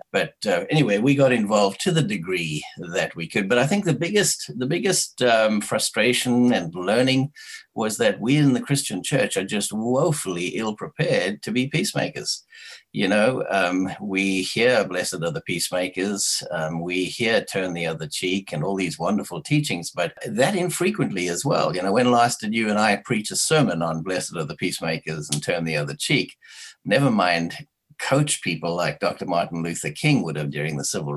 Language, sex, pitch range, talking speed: English, male, 90-145 Hz, 190 wpm